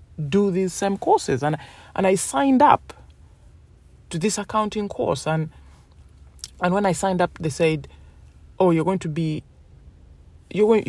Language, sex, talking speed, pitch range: English, male, 150 wpm, 140-185 Hz